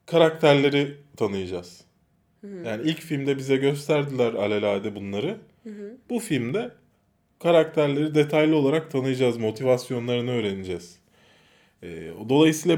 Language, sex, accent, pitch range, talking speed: Turkish, male, native, 105-155 Hz, 85 wpm